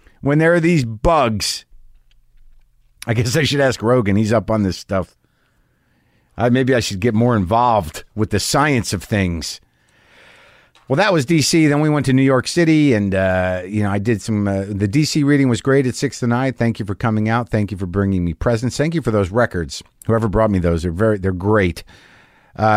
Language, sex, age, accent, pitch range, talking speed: English, male, 50-69, American, 110-155 Hz, 210 wpm